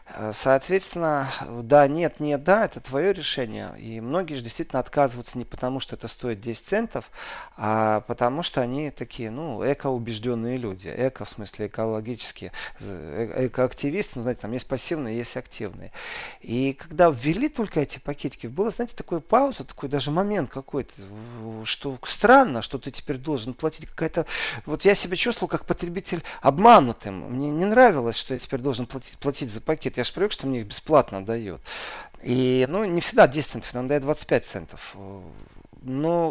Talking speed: 165 wpm